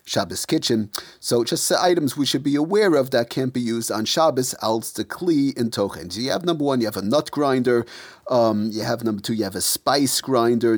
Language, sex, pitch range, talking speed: English, male, 110-140 Hz, 230 wpm